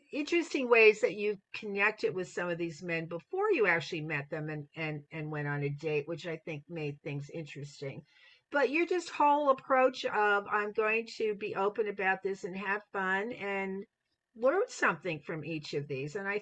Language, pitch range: English, 155-205 Hz